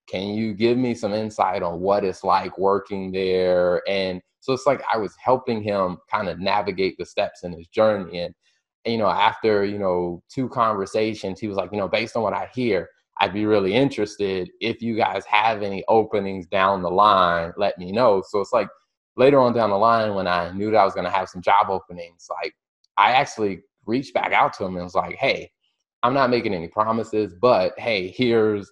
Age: 20-39